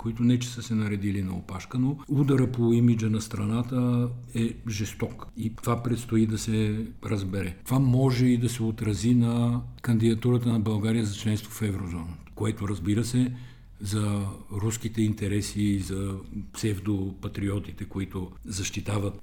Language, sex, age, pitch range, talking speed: Bulgarian, male, 50-69, 100-120 Hz, 145 wpm